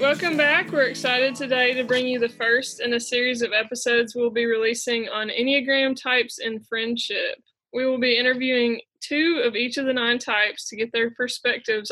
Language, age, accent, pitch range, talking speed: English, 20-39, American, 220-250 Hz, 190 wpm